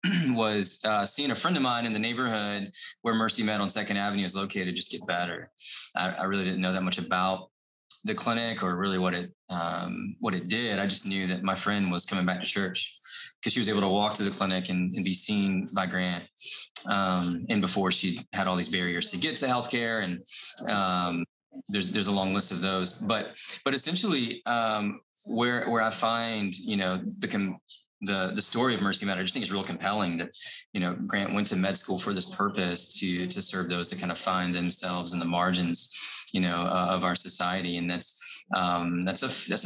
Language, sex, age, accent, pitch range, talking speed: English, male, 20-39, American, 90-105 Hz, 220 wpm